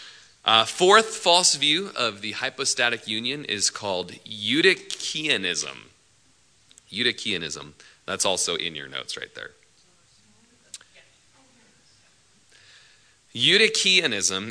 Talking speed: 85 wpm